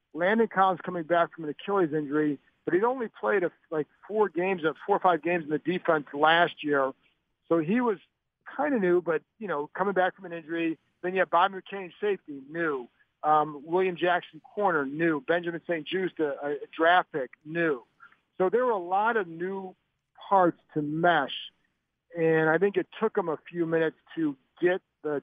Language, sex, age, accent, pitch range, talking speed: English, male, 50-69, American, 155-190 Hz, 190 wpm